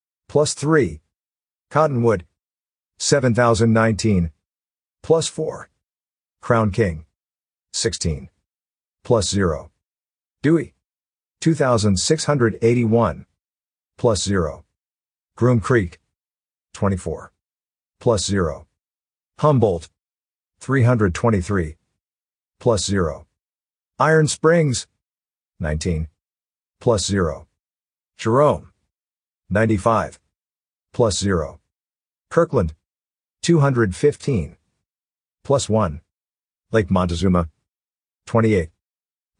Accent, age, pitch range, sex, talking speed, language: American, 50-69, 90-120 Hz, male, 60 wpm, English